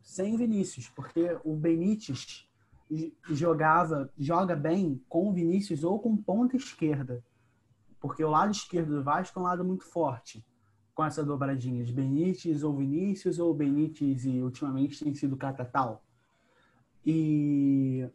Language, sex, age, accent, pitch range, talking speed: English, male, 20-39, Brazilian, 140-180 Hz, 135 wpm